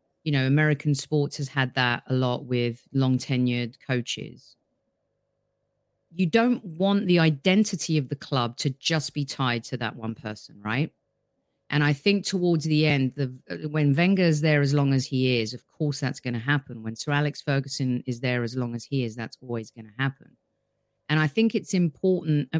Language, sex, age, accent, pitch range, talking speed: English, female, 40-59, British, 130-170 Hz, 190 wpm